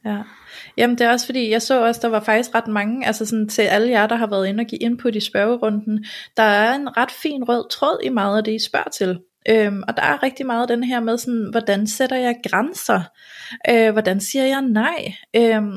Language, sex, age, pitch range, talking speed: Danish, female, 30-49, 210-255 Hz, 235 wpm